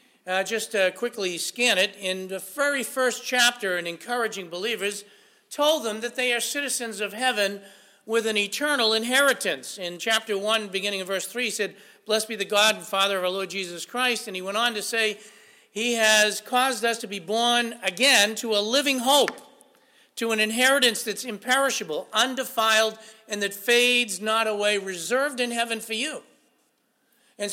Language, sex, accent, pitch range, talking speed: English, male, American, 205-245 Hz, 175 wpm